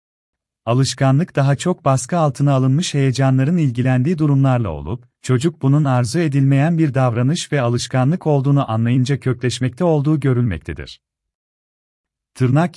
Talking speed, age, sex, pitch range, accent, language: 115 wpm, 40-59, male, 120-150 Hz, native, Turkish